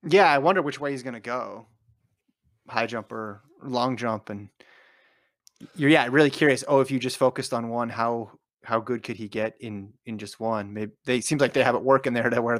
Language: English